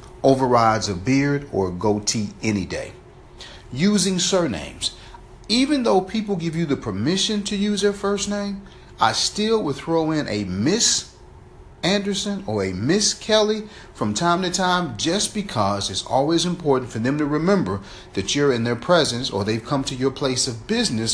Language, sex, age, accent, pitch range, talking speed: English, male, 40-59, American, 115-185 Hz, 170 wpm